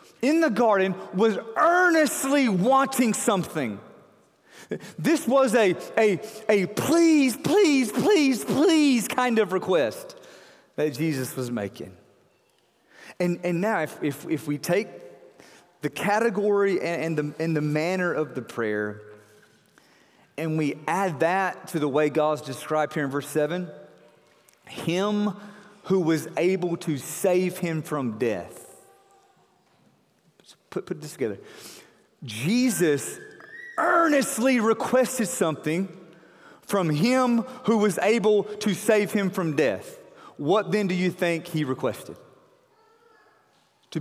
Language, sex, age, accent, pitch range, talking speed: English, male, 30-49, American, 145-225 Hz, 120 wpm